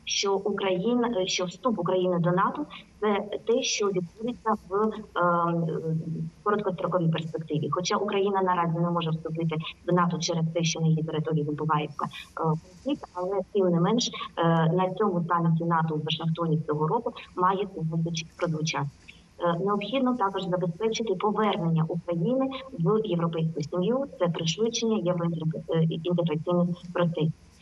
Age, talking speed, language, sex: 20-39, 135 wpm, Ukrainian, male